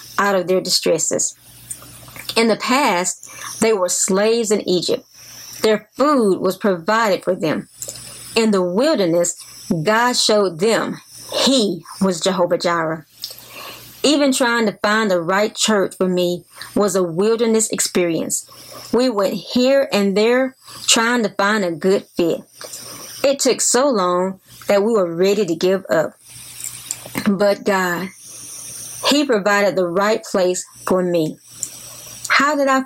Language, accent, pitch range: English, American, 185-230 Hz